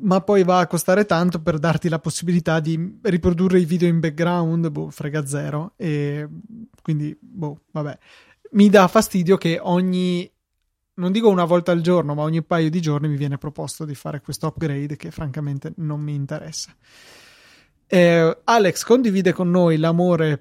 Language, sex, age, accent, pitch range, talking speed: Italian, male, 20-39, native, 150-180 Hz, 170 wpm